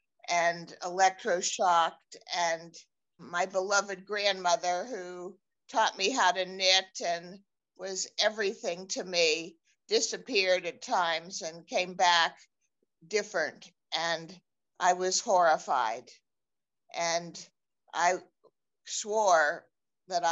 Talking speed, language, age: 95 wpm, English, 50-69